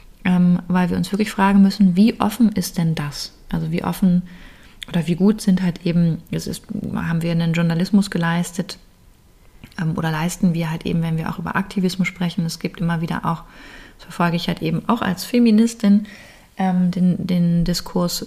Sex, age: female, 30-49